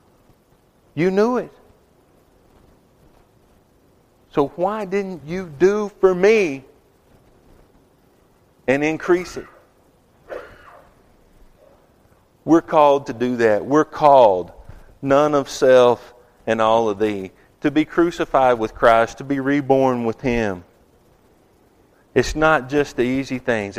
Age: 40-59